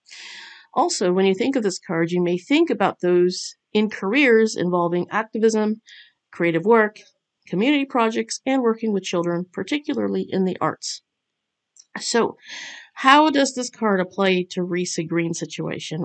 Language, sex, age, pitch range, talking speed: English, female, 50-69, 180-225 Hz, 140 wpm